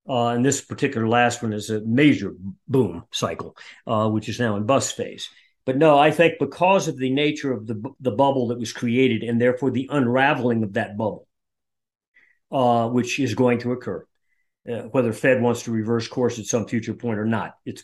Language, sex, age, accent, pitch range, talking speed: English, male, 50-69, American, 115-135 Hz, 200 wpm